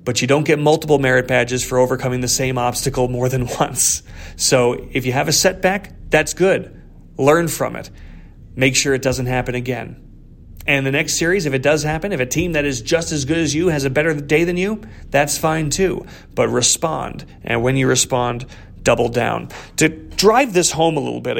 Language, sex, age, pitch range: English, male, 30-49, 130-155 Hz